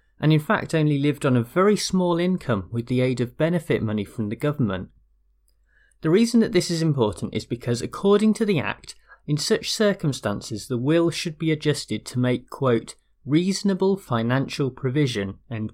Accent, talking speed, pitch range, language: British, 175 wpm, 115-165 Hz, English